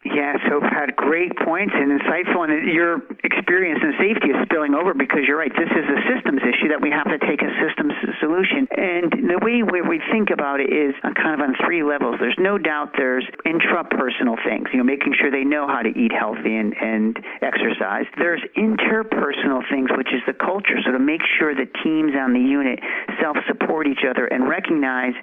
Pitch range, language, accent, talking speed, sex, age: 140-230 Hz, English, American, 200 wpm, male, 50-69